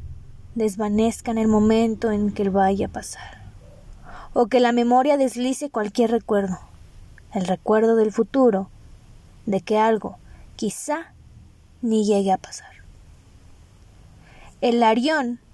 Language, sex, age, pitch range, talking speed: Spanish, female, 20-39, 170-250 Hz, 115 wpm